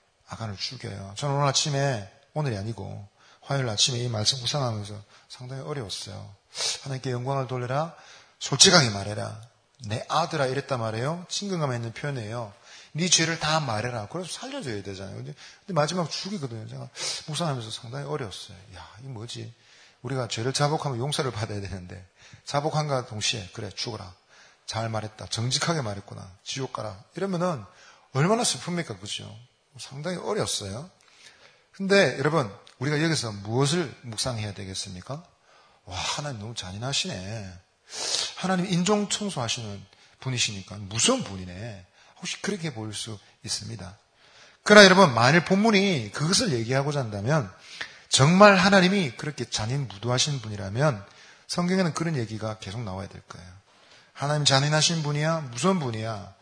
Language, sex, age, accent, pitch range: Korean, male, 40-59, native, 110-155 Hz